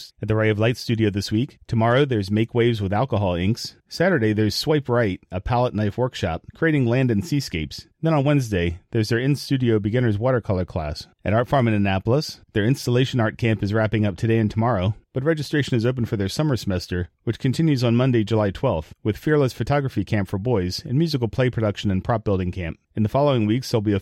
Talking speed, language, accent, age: 215 wpm, English, American, 30-49